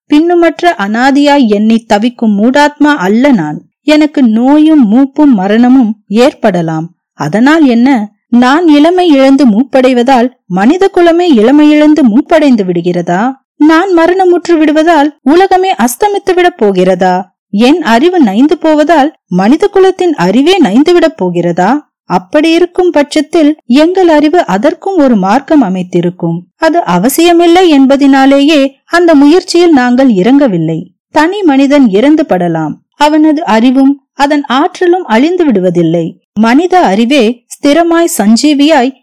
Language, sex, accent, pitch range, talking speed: Tamil, female, native, 220-315 Hz, 100 wpm